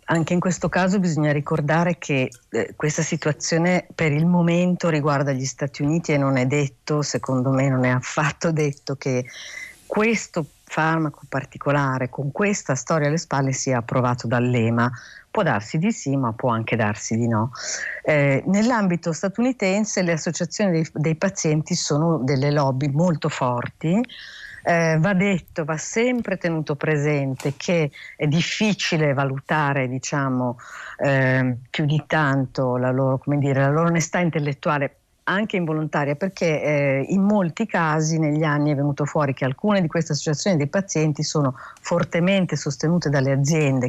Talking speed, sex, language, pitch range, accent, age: 150 wpm, female, Italian, 135-175 Hz, native, 50-69